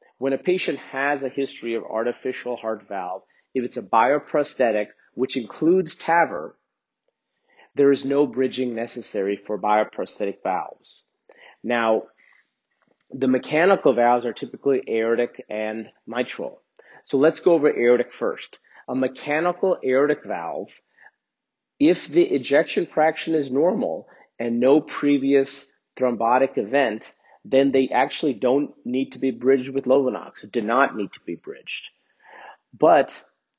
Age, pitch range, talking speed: 40-59, 110-135 Hz, 130 wpm